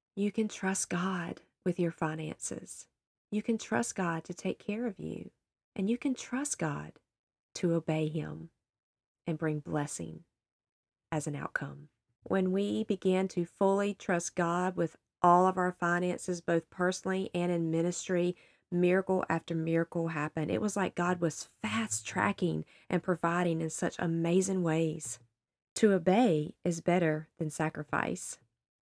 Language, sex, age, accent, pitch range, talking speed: English, female, 40-59, American, 165-225 Hz, 145 wpm